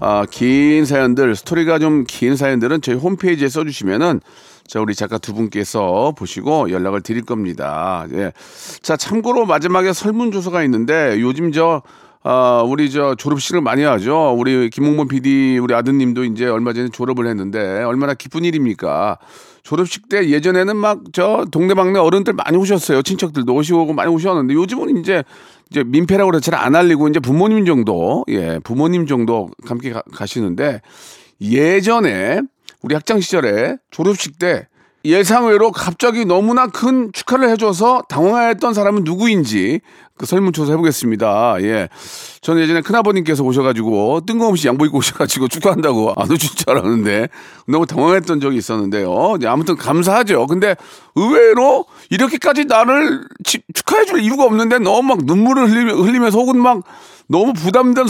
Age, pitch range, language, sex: 40-59, 130-215 Hz, Korean, male